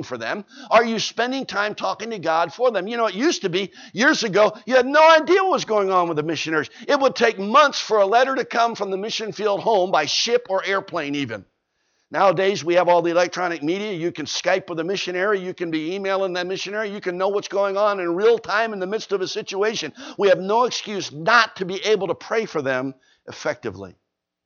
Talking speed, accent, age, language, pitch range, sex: 235 wpm, American, 60-79, English, 165-220 Hz, male